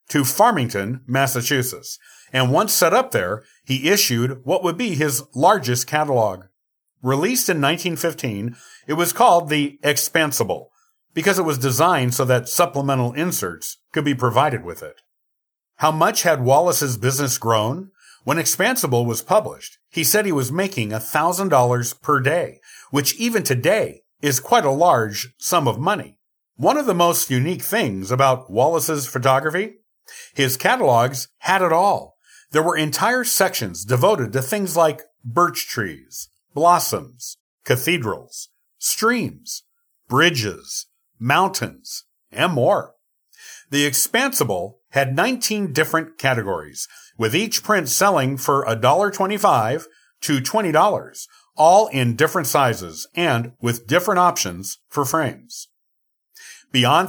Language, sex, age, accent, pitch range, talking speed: English, male, 50-69, American, 125-175 Hz, 130 wpm